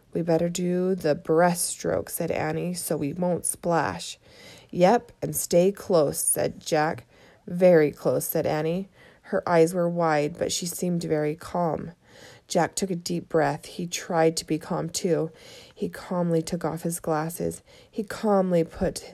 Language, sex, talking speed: English, female, 155 wpm